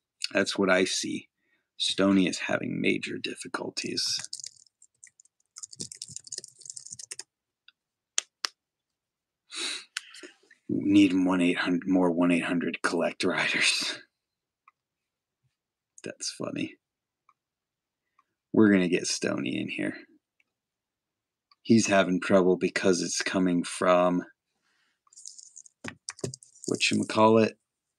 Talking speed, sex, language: 70 wpm, male, English